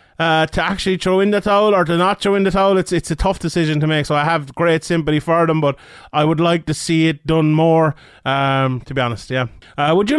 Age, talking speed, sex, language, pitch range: 20-39, 265 wpm, male, English, 160-195 Hz